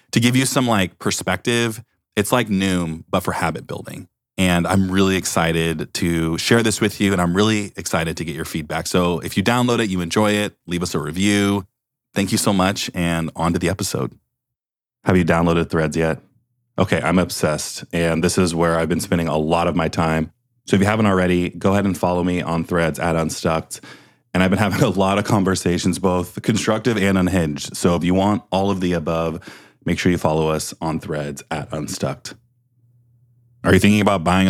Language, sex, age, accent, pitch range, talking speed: English, male, 30-49, American, 85-100 Hz, 205 wpm